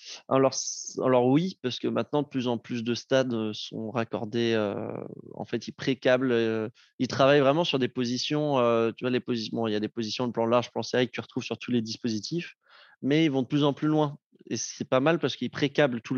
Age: 20-39